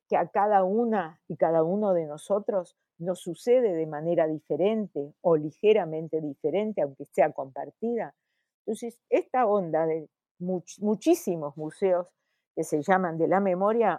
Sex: female